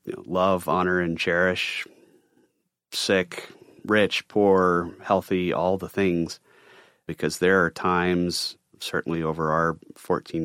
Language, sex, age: English, male, 30-49